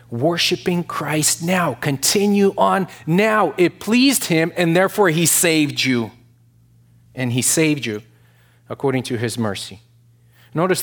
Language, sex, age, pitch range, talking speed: English, male, 30-49, 120-145 Hz, 125 wpm